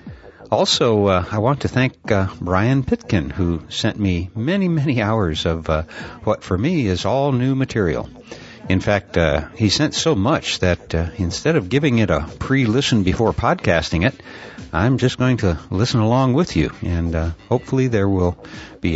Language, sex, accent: English, male, American